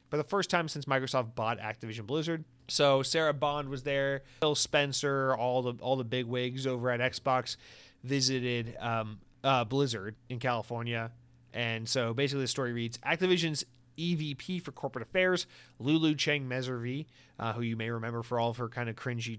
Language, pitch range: English, 115-140 Hz